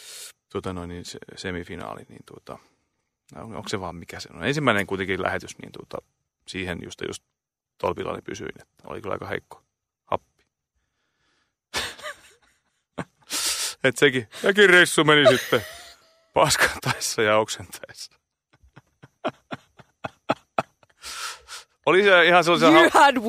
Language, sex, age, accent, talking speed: Finnish, male, 30-49, native, 115 wpm